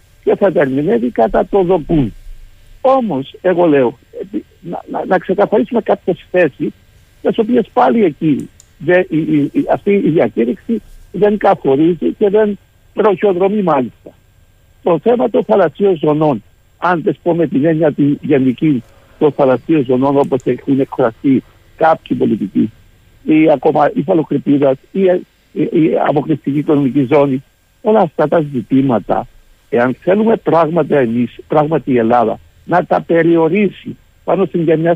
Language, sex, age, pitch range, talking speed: Greek, male, 60-79, 130-195 Hz, 130 wpm